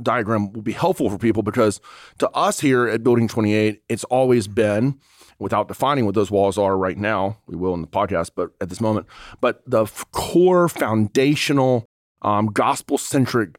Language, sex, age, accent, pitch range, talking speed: English, male, 30-49, American, 105-130 Hz, 170 wpm